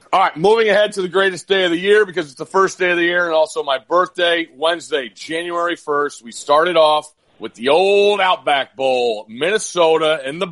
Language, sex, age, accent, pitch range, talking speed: English, male, 40-59, American, 135-170 Hz, 210 wpm